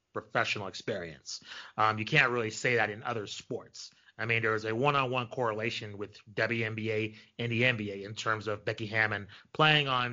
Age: 30-49